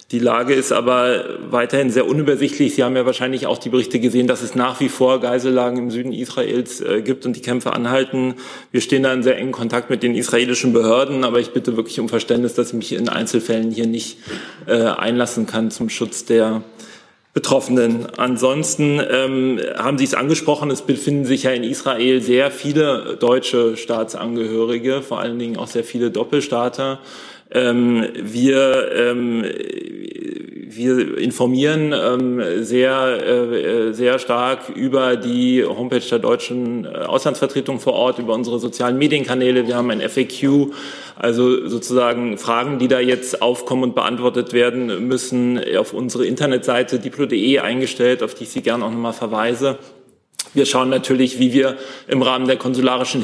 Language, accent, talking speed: German, German, 160 wpm